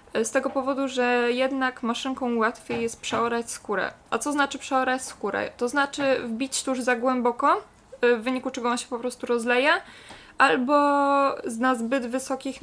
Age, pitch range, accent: 20-39, 220-265 Hz, native